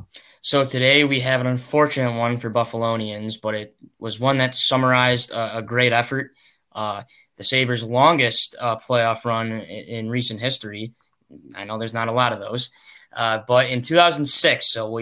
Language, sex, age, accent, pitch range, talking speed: English, male, 10-29, American, 110-130 Hz, 170 wpm